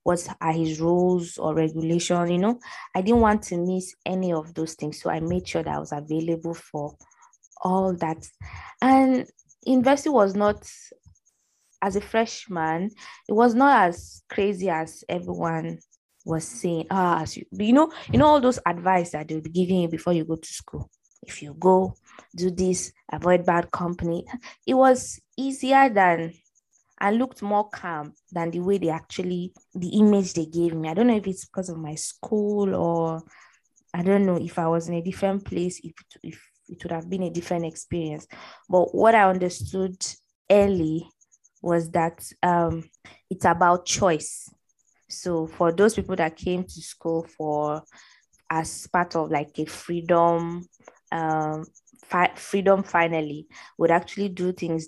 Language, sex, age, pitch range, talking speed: English, female, 20-39, 160-195 Hz, 165 wpm